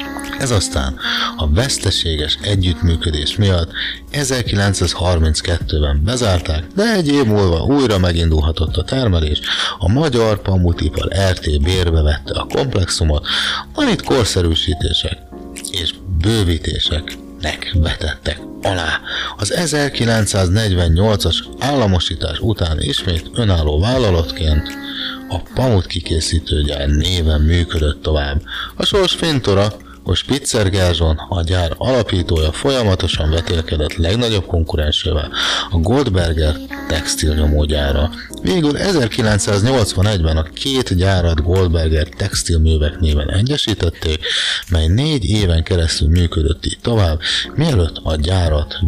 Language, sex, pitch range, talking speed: Hungarian, male, 80-100 Hz, 95 wpm